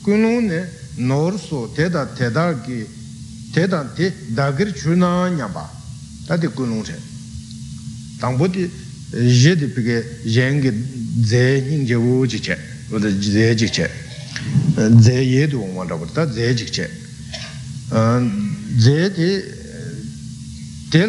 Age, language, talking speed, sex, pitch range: 60-79, Italian, 50 wpm, male, 120-165 Hz